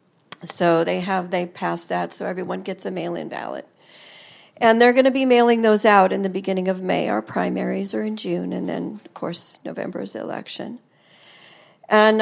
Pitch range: 195-240 Hz